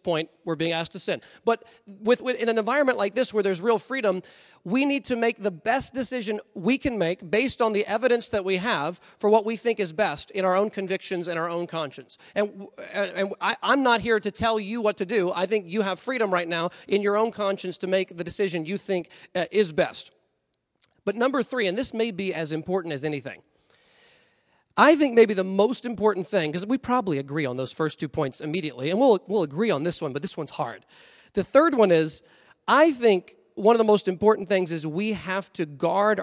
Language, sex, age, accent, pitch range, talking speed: English, male, 30-49, American, 170-220 Hz, 225 wpm